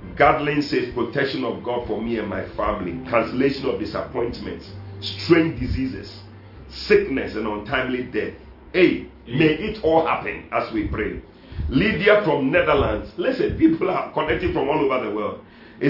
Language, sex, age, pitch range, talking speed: English, male, 40-59, 105-145 Hz, 150 wpm